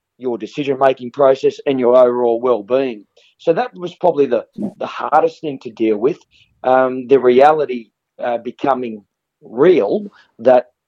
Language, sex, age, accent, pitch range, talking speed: English, male, 40-59, Australian, 120-140 Hz, 140 wpm